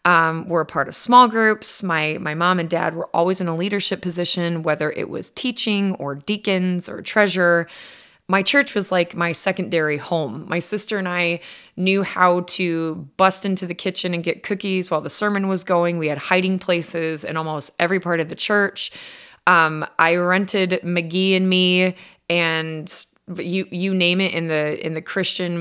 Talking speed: 185 wpm